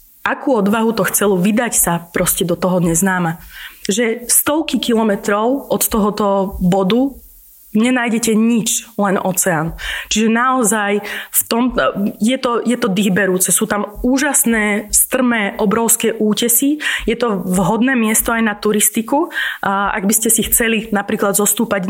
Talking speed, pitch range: 130 wpm, 195-225 Hz